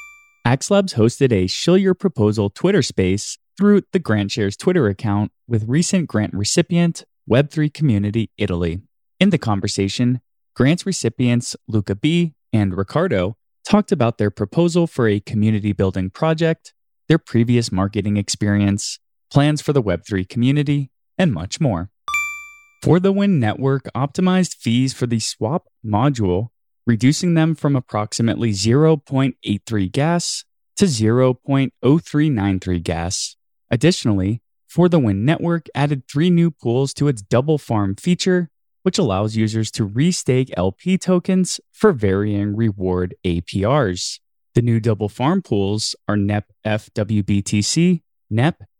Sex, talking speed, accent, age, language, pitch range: male, 125 wpm, American, 20-39, English, 105-165 Hz